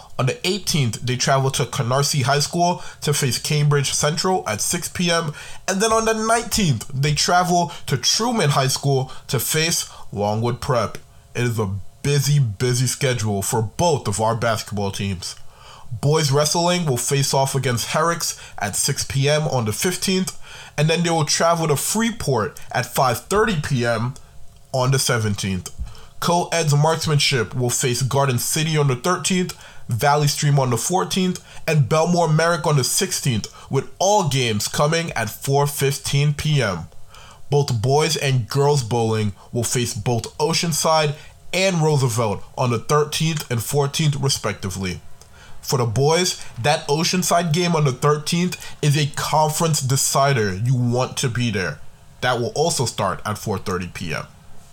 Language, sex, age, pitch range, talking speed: English, male, 20-39, 120-160 Hz, 150 wpm